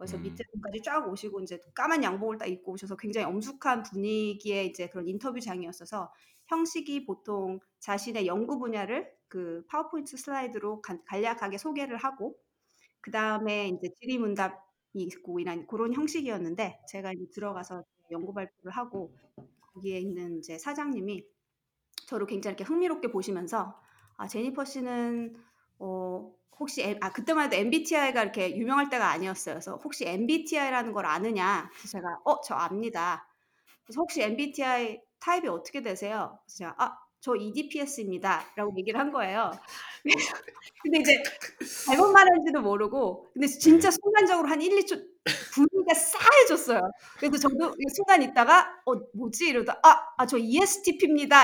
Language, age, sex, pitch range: Korean, 30-49, female, 195-290 Hz